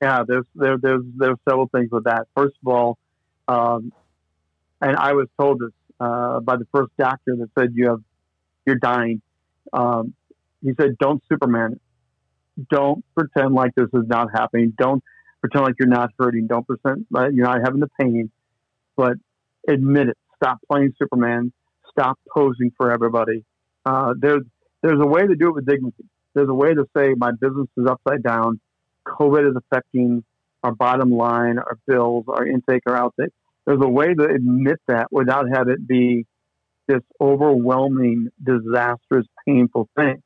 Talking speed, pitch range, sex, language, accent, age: 170 wpm, 120-140 Hz, male, English, American, 50-69